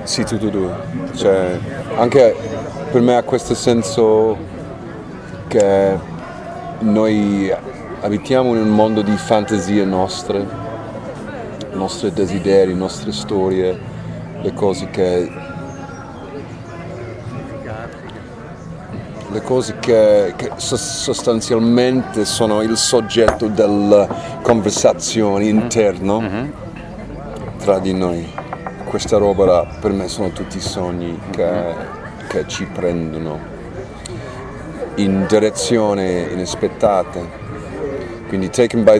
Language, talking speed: Italian, 90 wpm